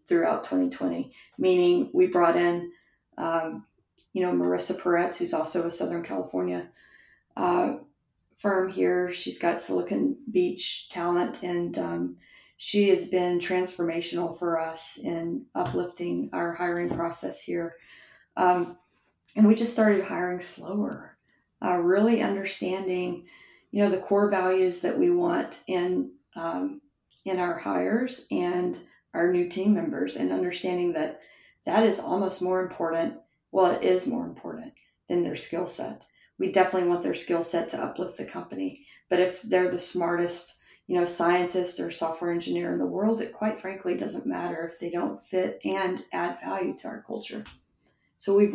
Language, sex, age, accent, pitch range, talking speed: English, female, 40-59, American, 170-200 Hz, 155 wpm